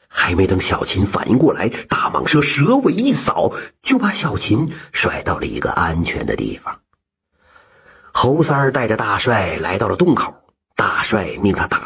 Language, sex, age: Chinese, male, 50-69